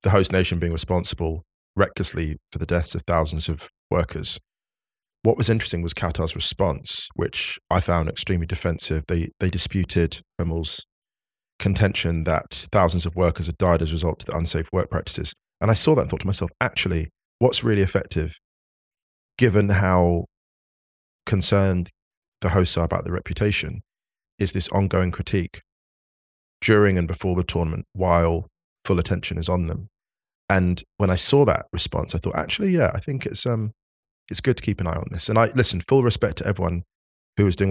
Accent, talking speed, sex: British, 175 wpm, male